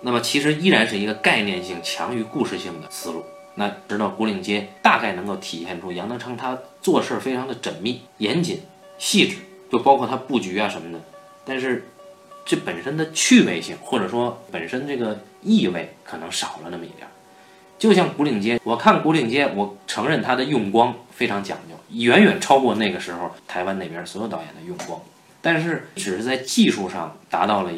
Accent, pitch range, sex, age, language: native, 110-180 Hz, male, 20-39, Chinese